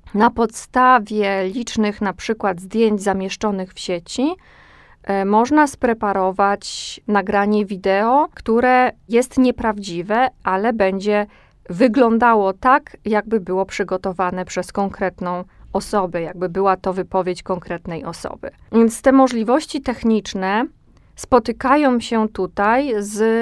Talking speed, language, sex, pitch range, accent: 105 wpm, Polish, female, 195-250 Hz, native